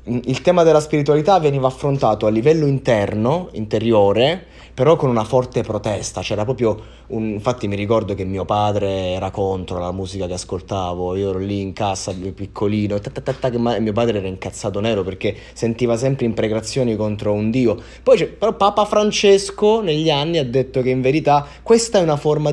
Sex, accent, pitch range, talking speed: male, native, 105-135 Hz, 180 wpm